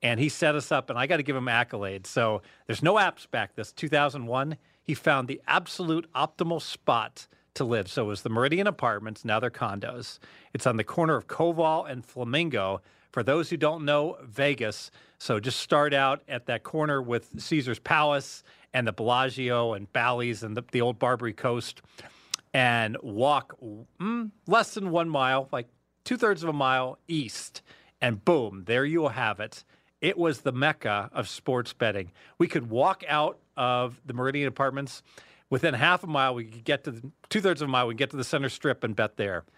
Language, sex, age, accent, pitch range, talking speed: English, male, 40-59, American, 120-150 Hz, 195 wpm